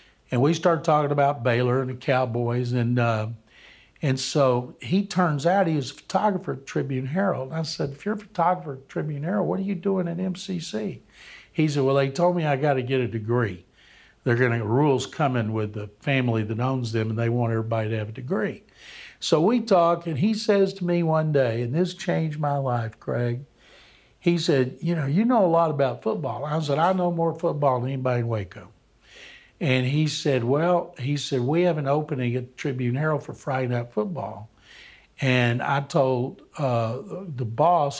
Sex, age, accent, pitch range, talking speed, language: male, 60-79, American, 120-155 Hz, 205 wpm, English